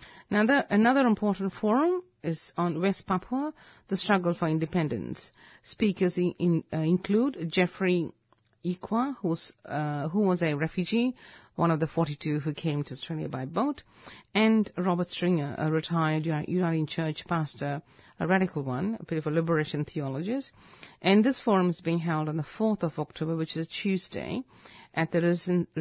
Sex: female